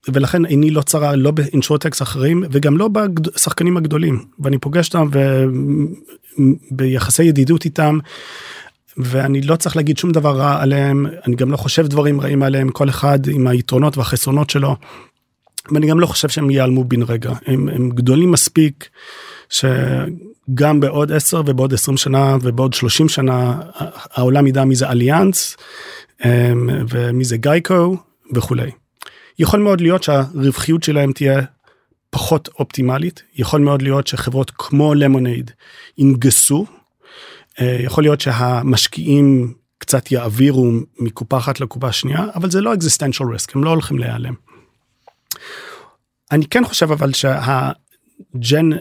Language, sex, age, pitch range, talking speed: Hebrew, male, 30-49, 130-150 Hz, 130 wpm